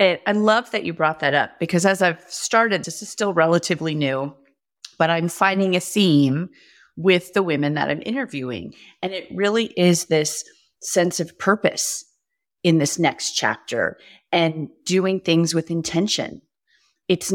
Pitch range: 160-205 Hz